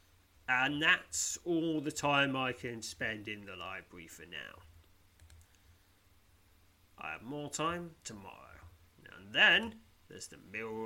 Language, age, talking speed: English, 30-49, 125 wpm